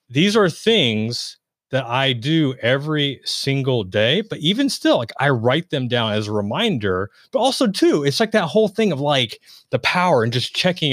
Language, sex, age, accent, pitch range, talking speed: English, male, 30-49, American, 110-155 Hz, 190 wpm